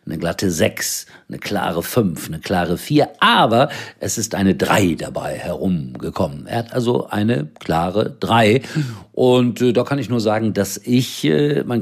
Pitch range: 90-120 Hz